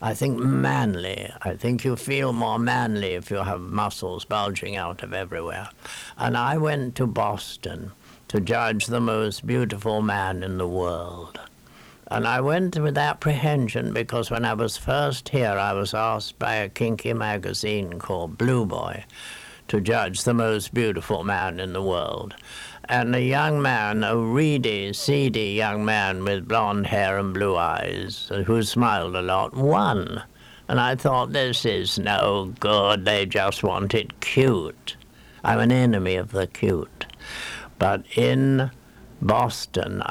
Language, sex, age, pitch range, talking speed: English, male, 60-79, 100-120 Hz, 155 wpm